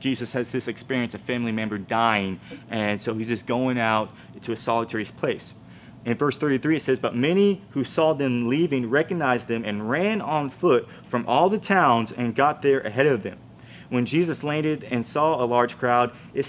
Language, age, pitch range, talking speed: English, 30-49, 120-155 Hz, 195 wpm